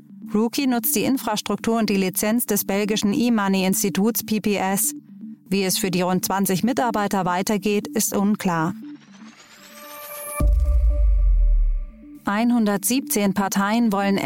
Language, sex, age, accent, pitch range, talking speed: German, female, 30-49, German, 195-230 Hz, 100 wpm